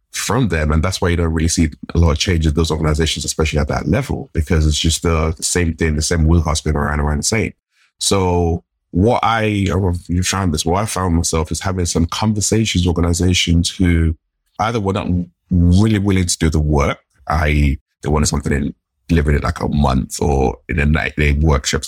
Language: English